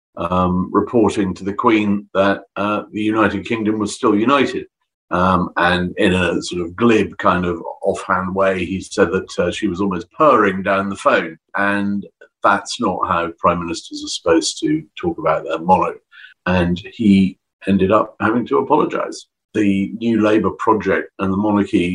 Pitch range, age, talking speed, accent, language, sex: 90-115 Hz, 50-69, 170 wpm, British, English, male